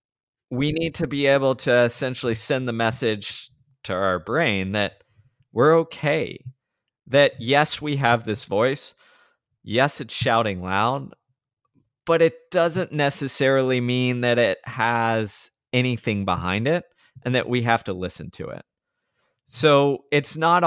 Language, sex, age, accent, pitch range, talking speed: English, male, 20-39, American, 115-140 Hz, 140 wpm